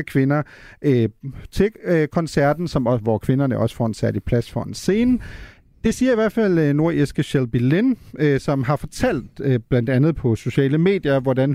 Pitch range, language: 125-170 Hz, Danish